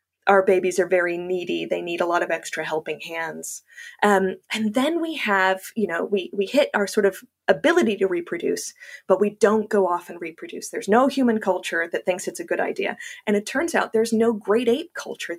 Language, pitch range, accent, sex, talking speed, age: English, 190-255 Hz, American, female, 215 wpm, 20-39